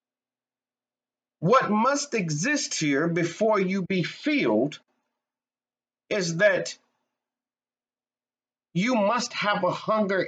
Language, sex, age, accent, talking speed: English, male, 50-69, American, 90 wpm